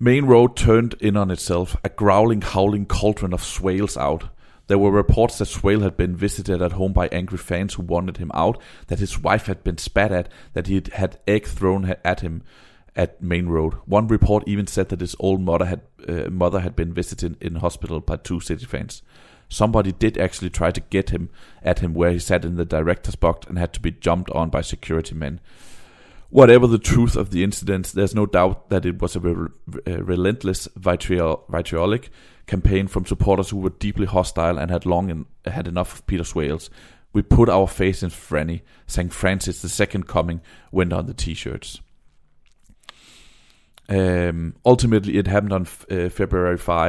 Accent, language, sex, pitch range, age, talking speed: native, Danish, male, 85-100 Hz, 30-49, 190 wpm